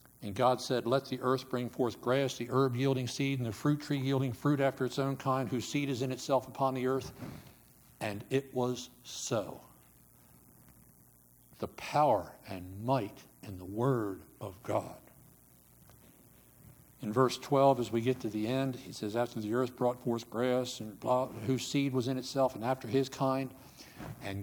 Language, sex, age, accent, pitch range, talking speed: English, male, 60-79, American, 105-135 Hz, 175 wpm